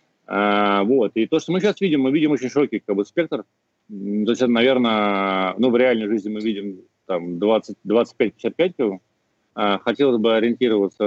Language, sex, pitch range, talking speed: Russian, male, 95-115 Hz, 165 wpm